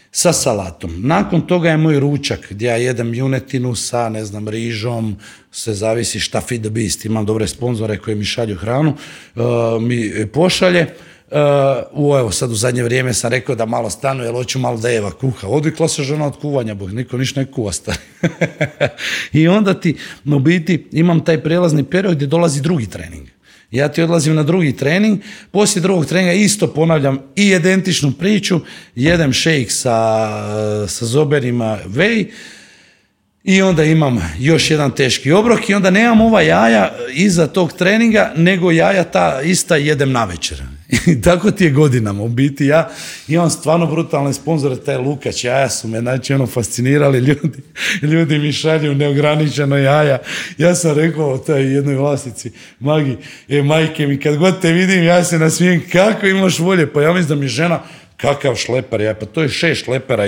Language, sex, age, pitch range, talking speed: Croatian, male, 40-59, 120-170 Hz, 170 wpm